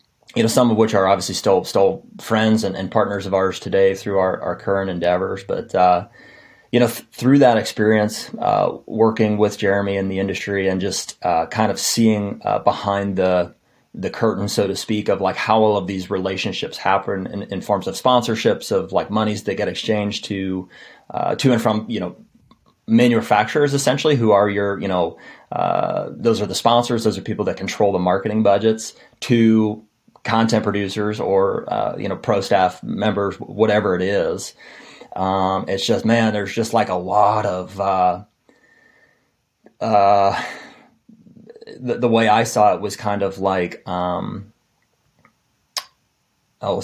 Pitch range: 95-115 Hz